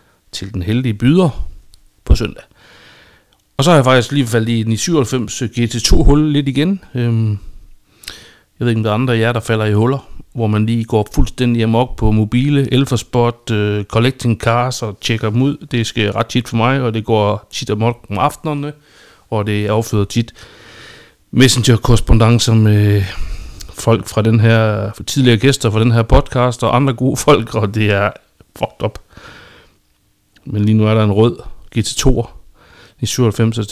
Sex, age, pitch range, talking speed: male, 60-79, 100-120 Hz, 175 wpm